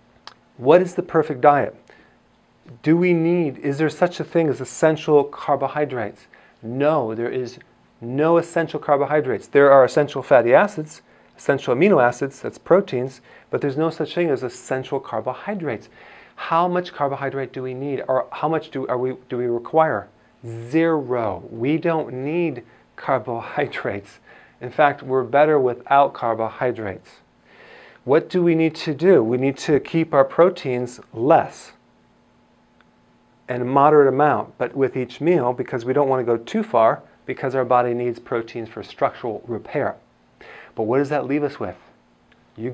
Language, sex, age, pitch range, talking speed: English, male, 40-59, 125-150 Hz, 155 wpm